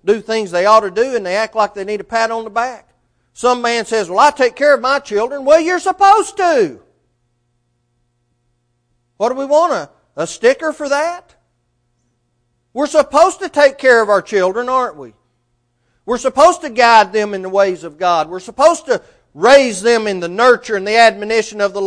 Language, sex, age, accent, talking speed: English, male, 40-59, American, 200 wpm